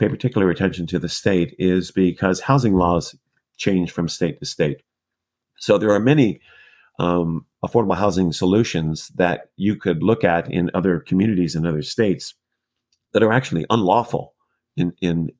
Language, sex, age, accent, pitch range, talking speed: English, male, 50-69, American, 85-105 Hz, 150 wpm